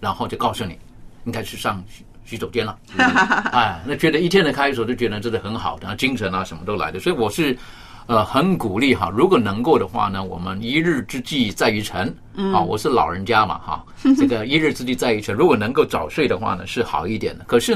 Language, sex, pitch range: Chinese, male, 105-140 Hz